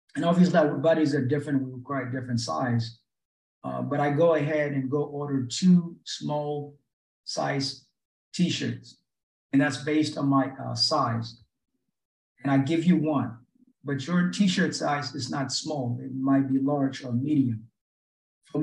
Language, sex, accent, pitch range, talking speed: English, male, American, 135-155 Hz, 155 wpm